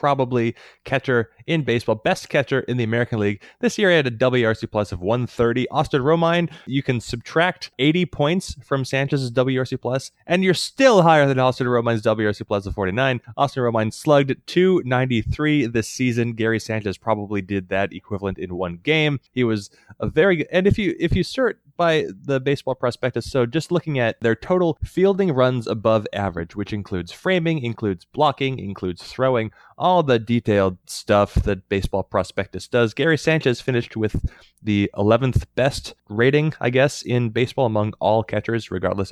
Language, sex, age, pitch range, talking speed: English, male, 20-39, 110-155 Hz, 170 wpm